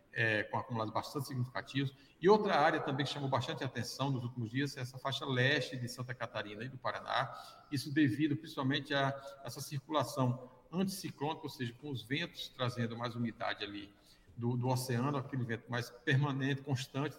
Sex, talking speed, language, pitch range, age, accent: male, 175 wpm, Portuguese, 120-145 Hz, 50-69, Brazilian